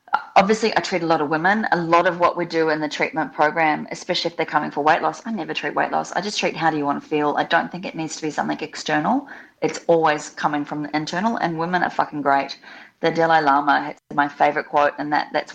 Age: 30-49